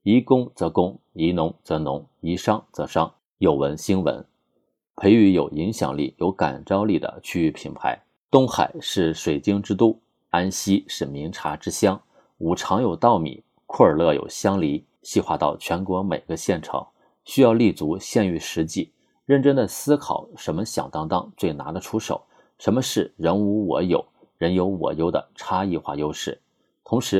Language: Chinese